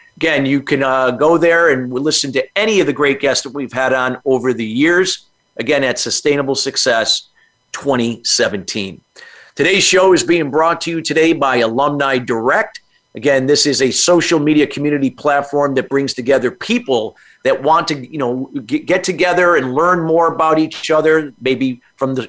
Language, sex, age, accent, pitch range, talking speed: English, male, 40-59, American, 135-165 Hz, 175 wpm